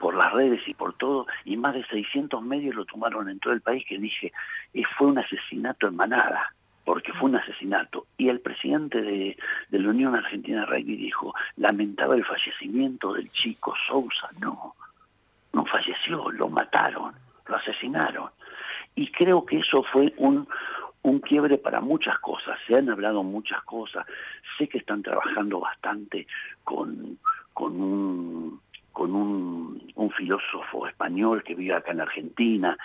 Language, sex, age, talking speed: Spanish, male, 60-79, 155 wpm